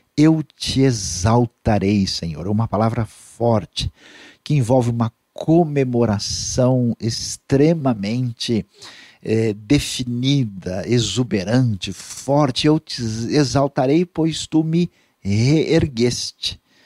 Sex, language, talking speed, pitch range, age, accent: male, Portuguese, 85 wpm, 110-160 Hz, 50-69, Brazilian